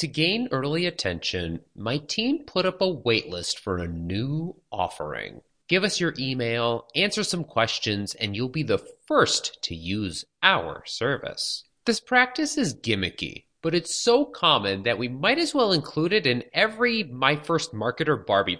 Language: English